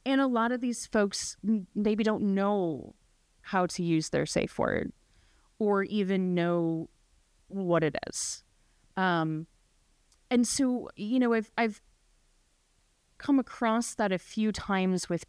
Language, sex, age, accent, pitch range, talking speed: English, female, 20-39, American, 165-205 Hz, 135 wpm